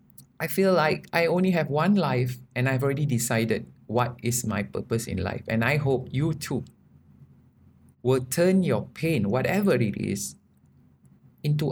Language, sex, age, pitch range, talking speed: English, male, 20-39, 115-140 Hz, 160 wpm